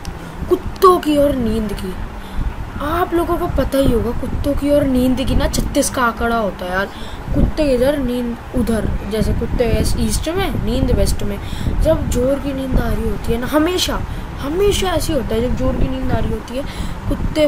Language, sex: Hindi, female